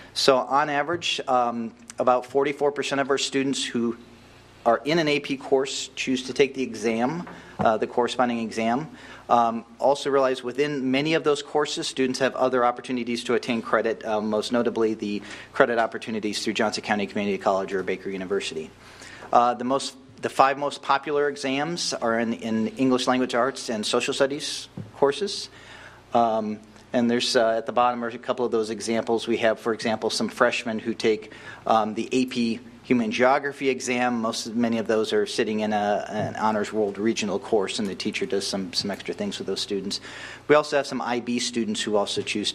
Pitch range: 110-135 Hz